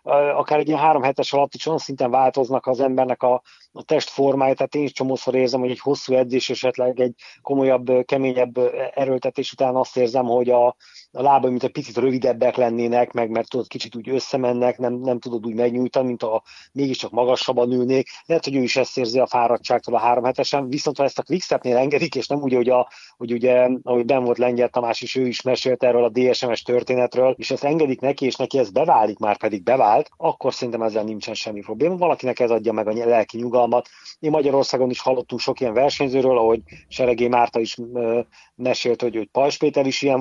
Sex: male